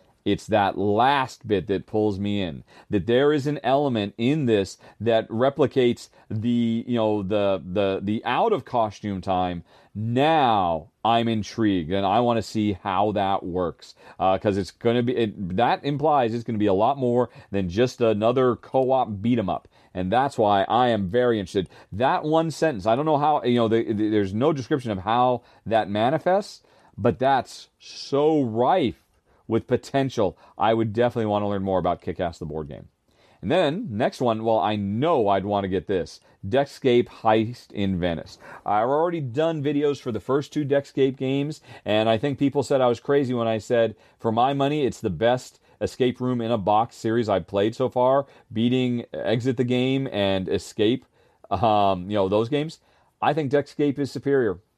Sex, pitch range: male, 105-135 Hz